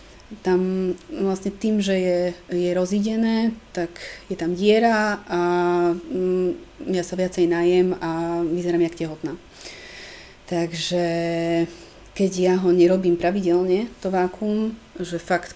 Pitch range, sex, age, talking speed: 175-195 Hz, female, 30-49, 115 wpm